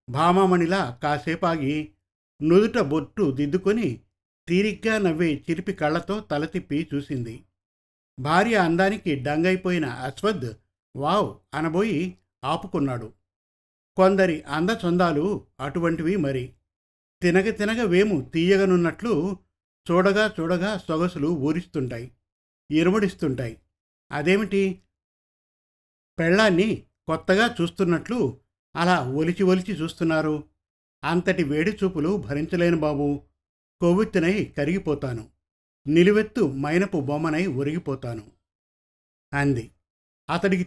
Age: 50-69